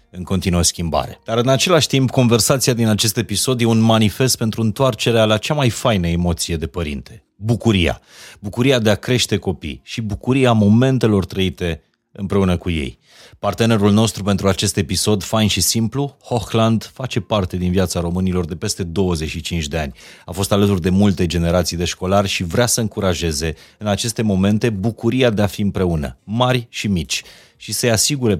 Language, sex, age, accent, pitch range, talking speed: Romanian, male, 30-49, native, 85-110 Hz, 170 wpm